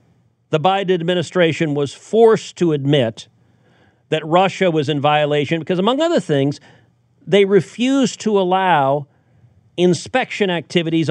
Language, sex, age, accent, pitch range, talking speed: English, male, 50-69, American, 130-185 Hz, 120 wpm